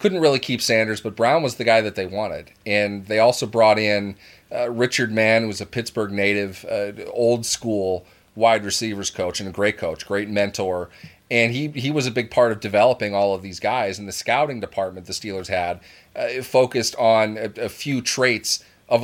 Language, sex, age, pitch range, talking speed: English, male, 30-49, 100-120 Hz, 200 wpm